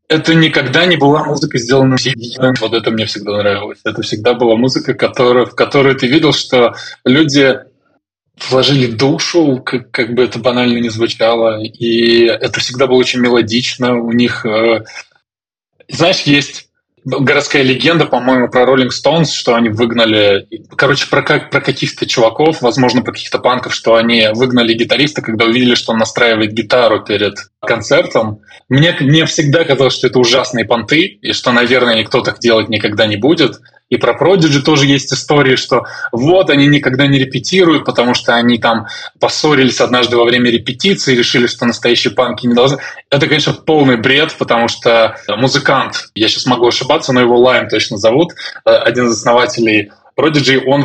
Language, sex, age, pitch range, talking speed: Russian, male, 20-39, 120-145 Hz, 160 wpm